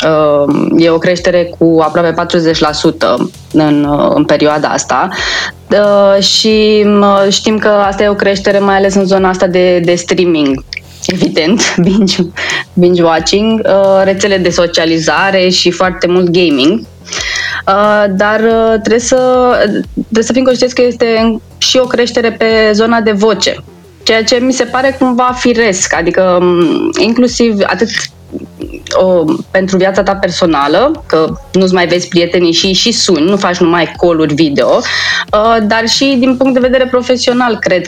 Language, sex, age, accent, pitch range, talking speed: Romanian, female, 20-39, native, 180-225 Hz, 140 wpm